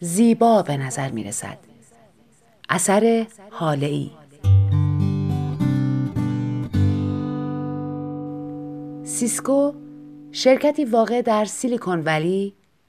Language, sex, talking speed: Persian, female, 60 wpm